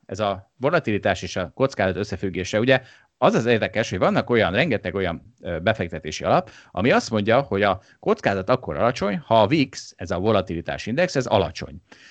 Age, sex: 30-49, male